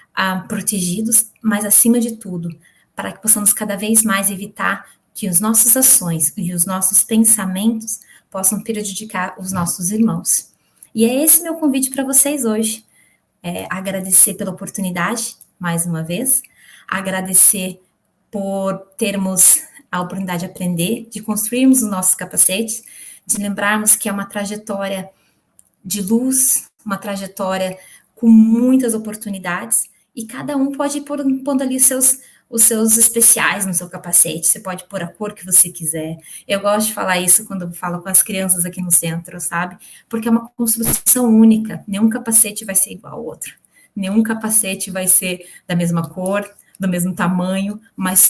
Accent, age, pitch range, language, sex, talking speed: Brazilian, 20-39, 185-225 Hz, Portuguese, female, 155 wpm